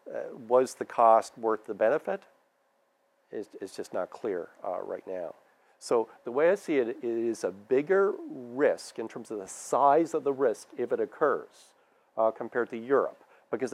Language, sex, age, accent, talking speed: English, male, 40-59, American, 185 wpm